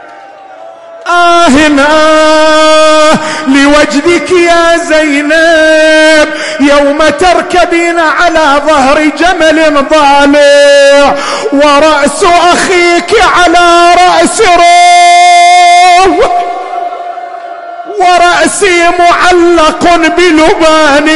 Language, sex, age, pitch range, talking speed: Arabic, male, 40-59, 300-345 Hz, 50 wpm